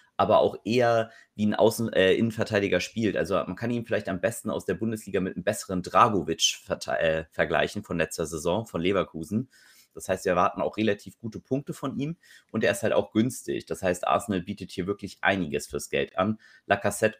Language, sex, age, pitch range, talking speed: German, male, 30-49, 90-110 Hz, 195 wpm